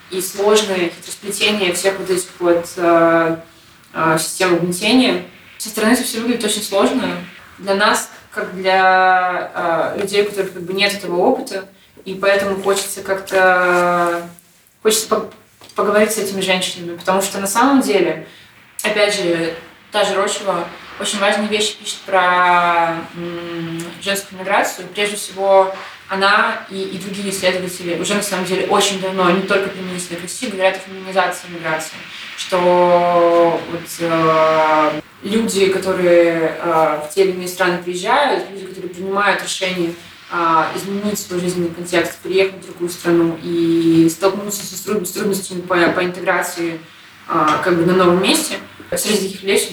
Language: Russian